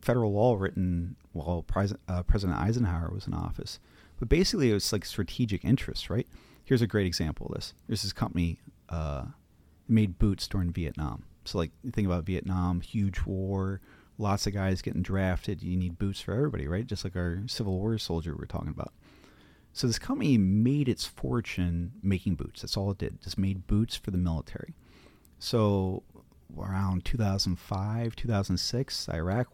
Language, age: English, 40-59